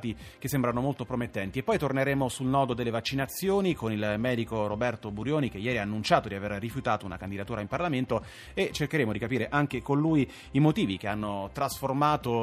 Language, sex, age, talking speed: Italian, male, 30-49, 190 wpm